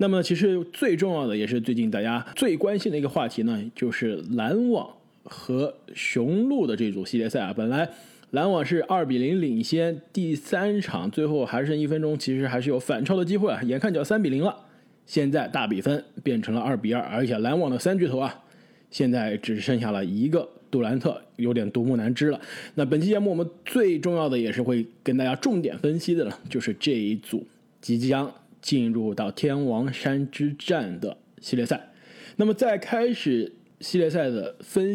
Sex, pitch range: male, 135-210 Hz